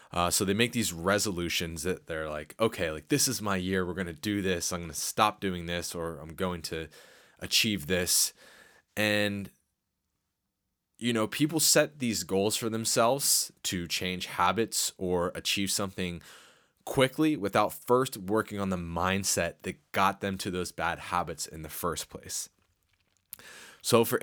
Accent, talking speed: American, 165 wpm